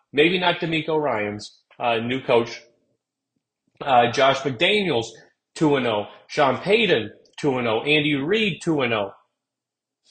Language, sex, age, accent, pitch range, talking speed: English, male, 30-49, American, 120-160 Hz, 100 wpm